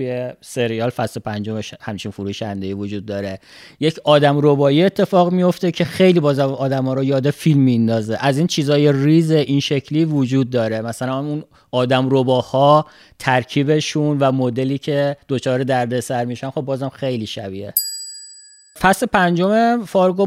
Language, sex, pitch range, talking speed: Persian, male, 135-175 Hz, 135 wpm